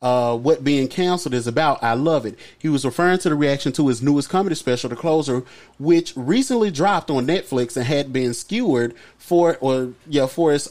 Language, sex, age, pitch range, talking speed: English, male, 30-49, 125-160 Hz, 200 wpm